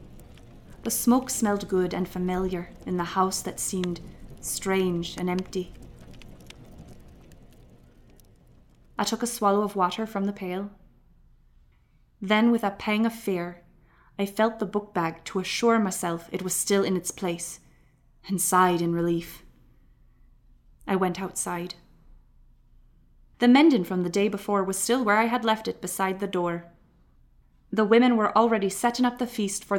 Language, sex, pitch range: English, female, 170-205 Hz